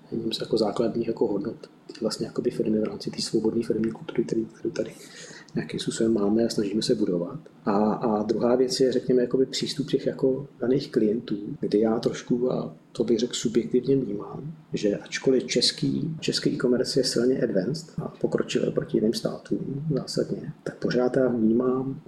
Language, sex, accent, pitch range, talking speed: Czech, male, native, 110-125 Hz, 160 wpm